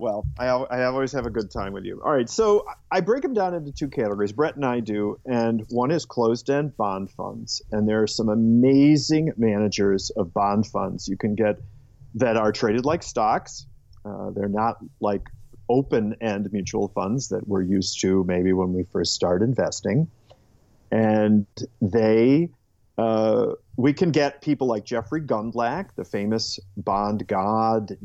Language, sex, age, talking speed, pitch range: English, male, 40-59, 170 wpm, 105-135 Hz